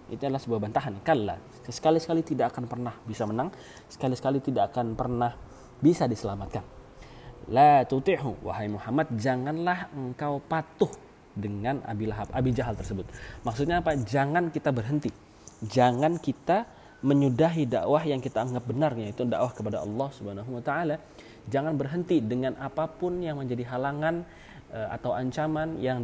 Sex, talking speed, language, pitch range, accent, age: male, 135 wpm, Indonesian, 105-135 Hz, native, 20-39